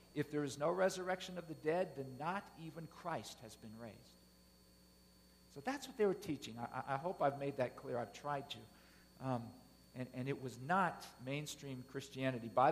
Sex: male